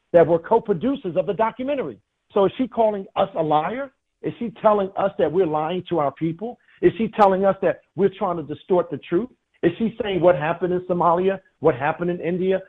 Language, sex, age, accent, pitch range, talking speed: English, male, 50-69, American, 140-185 Hz, 215 wpm